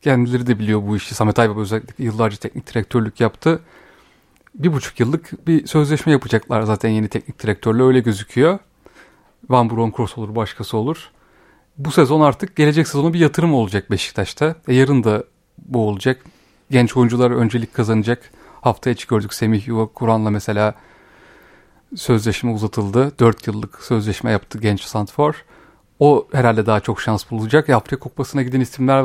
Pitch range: 110-140 Hz